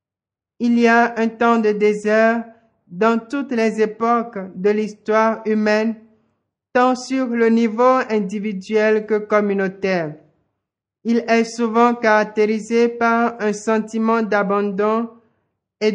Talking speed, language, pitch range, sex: 115 wpm, French, 205-230 Hz, male